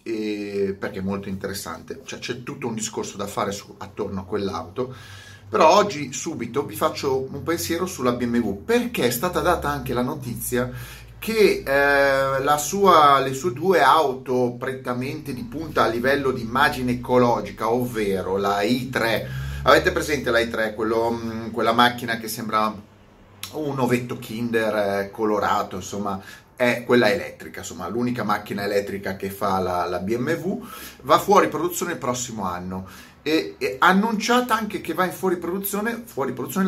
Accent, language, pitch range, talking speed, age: native, Italian, 105-135 Hz, 155 wpm, 30-49